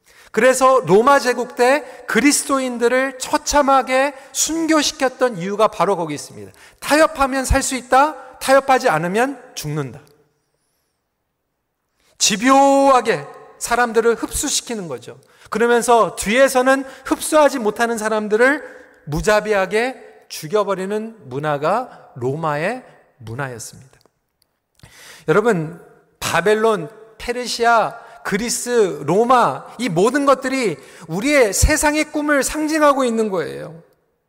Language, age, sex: Korean, 40-59, male